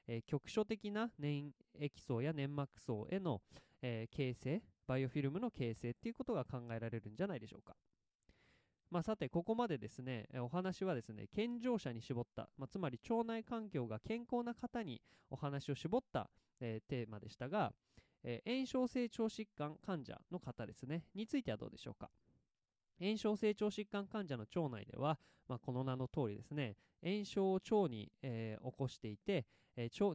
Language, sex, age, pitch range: Japanese, male, 20-39, 125-200 Hz